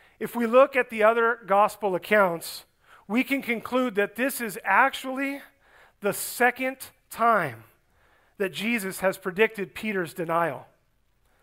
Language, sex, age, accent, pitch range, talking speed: English, male, 40-59, American, 185-240 Hz, 125 wpm